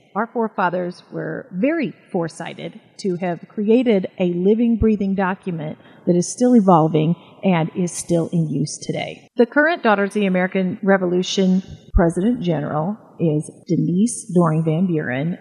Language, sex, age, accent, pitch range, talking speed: English, female, 40-59, American, 180-230 Hz, 140 wpm